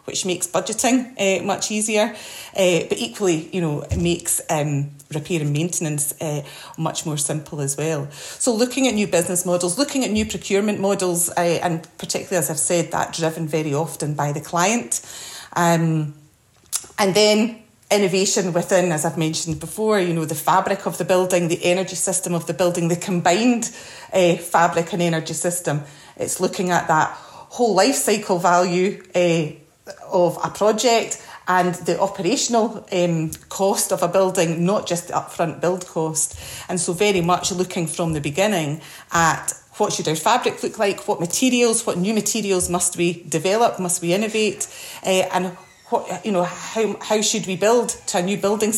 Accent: British